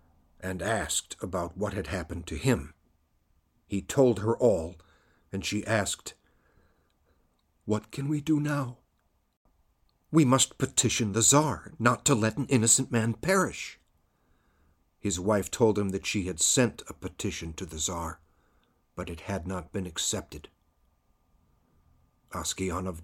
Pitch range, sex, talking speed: 80-120 Hz, male, 135 wpm